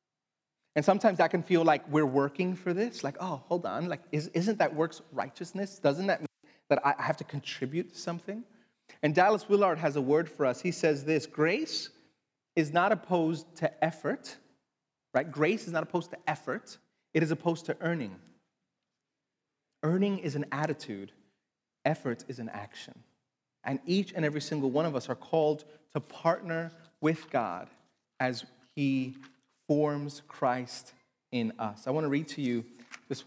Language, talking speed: English, 170 wpm